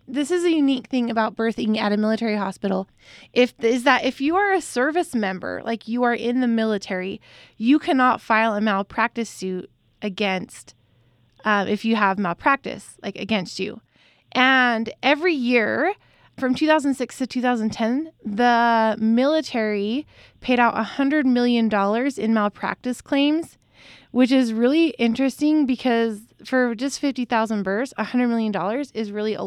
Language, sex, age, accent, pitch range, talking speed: English, female, 20-39, American, 210-260 Hz, 150 wpm